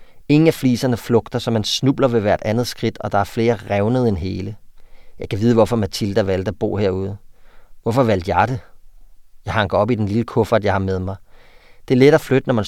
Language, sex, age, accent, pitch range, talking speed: Danish, male, 30-49, native, 100-120 Hz, 230 wpm